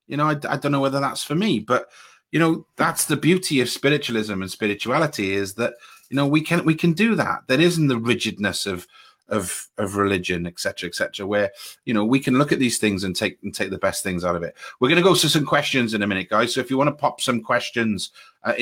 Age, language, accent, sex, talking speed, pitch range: 30-49, English, British, male, 260 wpm, 100-135 Hz